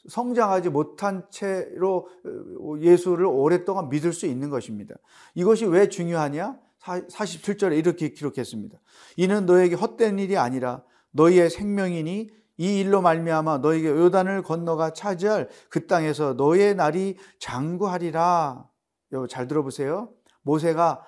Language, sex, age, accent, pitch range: Korean, male, 40-59, native, 165-200 Hz